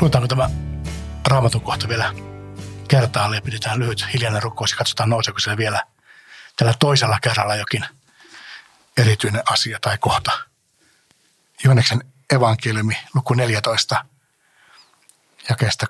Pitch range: 115-140 Hz